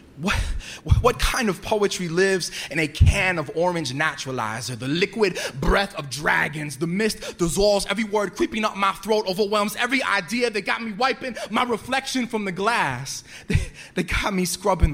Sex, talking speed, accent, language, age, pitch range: male, 175 wpm, American, English, 20-39, 125-200 Hz